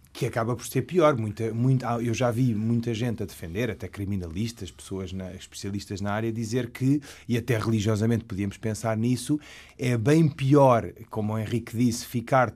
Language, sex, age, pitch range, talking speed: Portuguese, male, 30-49, 110-140 Hz, 175 wpm